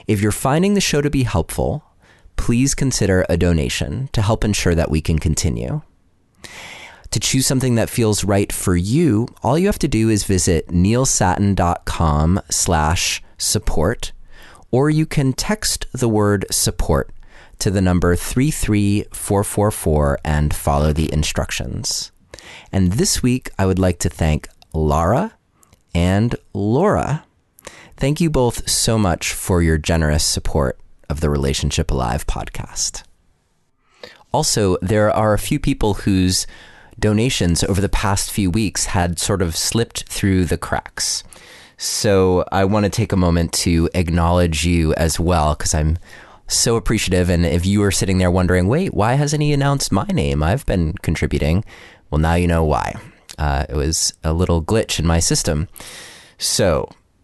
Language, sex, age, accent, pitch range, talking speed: English, male, 30-49, American, 80-110 Hz, 150 wpm